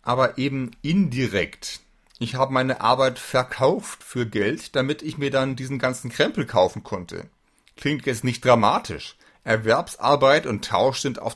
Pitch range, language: 120-165 Hz, German